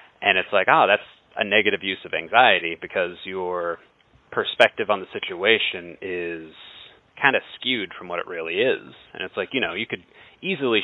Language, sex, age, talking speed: English, male, 30-49, 185 wpm